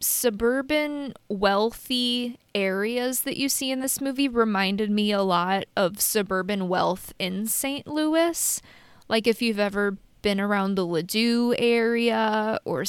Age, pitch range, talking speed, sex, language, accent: 20-39, 195-250 Hz, 135 wpm, female, English, American